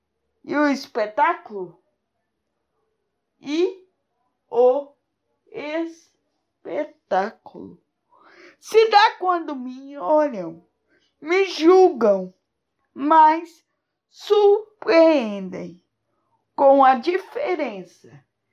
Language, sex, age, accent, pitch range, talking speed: Portuguese, female, 20-39, Brazilian, 235-365 Hz, 60 wpm